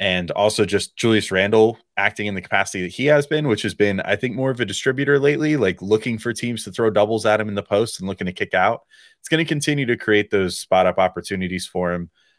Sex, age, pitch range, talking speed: male, 20-39, 90-110 Hz, 250 wpm